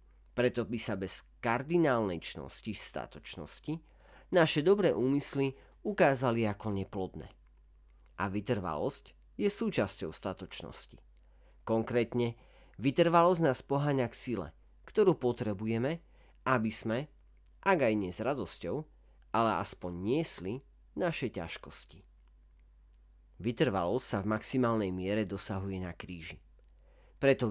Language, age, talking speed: Slovak, 40-59, 105 wpm